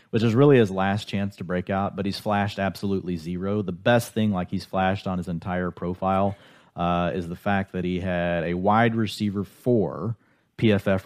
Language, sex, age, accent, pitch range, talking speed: English, male, 30-49, American, 85-105 Hz, 195 wpm